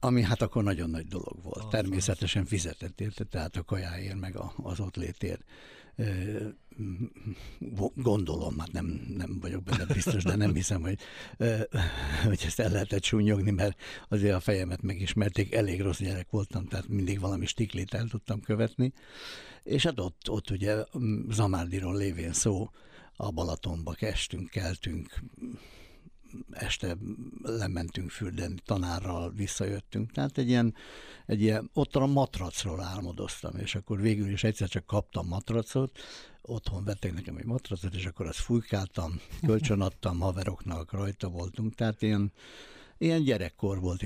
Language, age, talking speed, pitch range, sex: Hungarian, 60-79, 140 wpm, 90-110 Hz, male